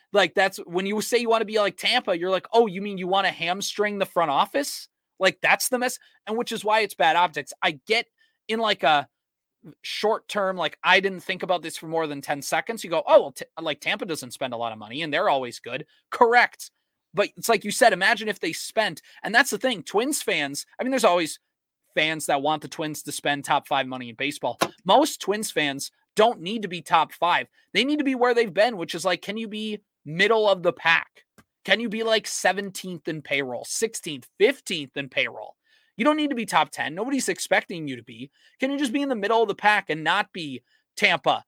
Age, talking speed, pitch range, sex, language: 30-49, 235 wpm, 150-225 Hz, male, English